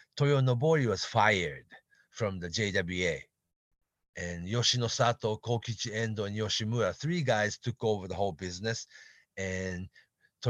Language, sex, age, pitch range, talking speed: English, male, 40-59, 90-120 Hz, 125 wpm